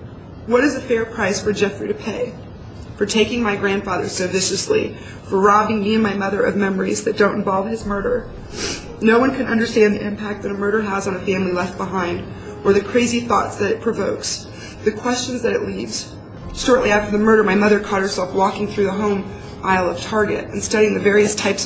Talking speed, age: 210 wpm, 30-49